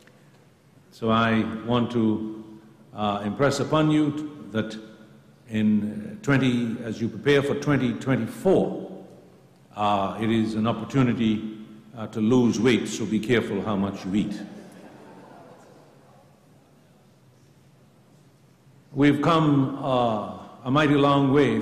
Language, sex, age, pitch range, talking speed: English, male, 60-79, 110-145 Hz, 110 wpm